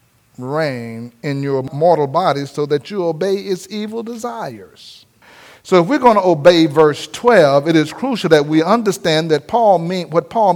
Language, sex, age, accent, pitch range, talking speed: English, male, 50-69, American, 130-175 Hz, 175 wpm